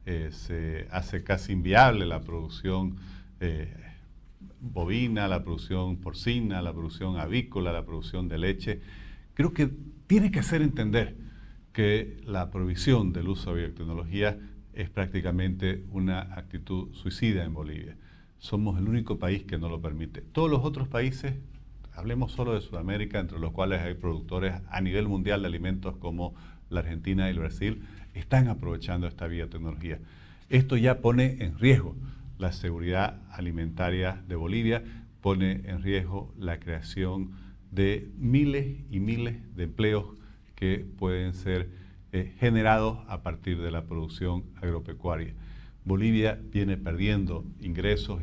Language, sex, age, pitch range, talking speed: Spanish, male, 50-69, 85-105 Hz, 140 wpm